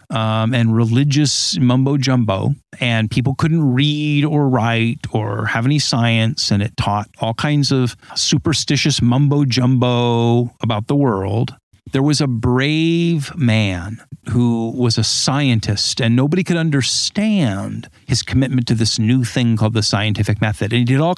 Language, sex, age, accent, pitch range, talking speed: English, male, 40-59, American, 115-140 Hz, 155 wpm